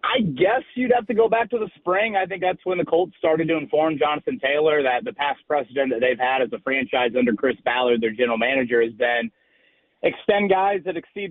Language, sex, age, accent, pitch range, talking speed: English, male, 30-49, American, 135-175 Hz, 230 wpm